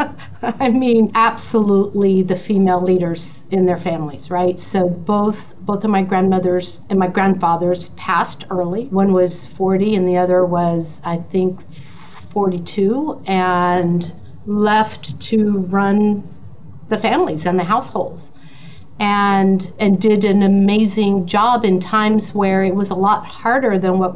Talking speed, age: 140 wpm, 50-69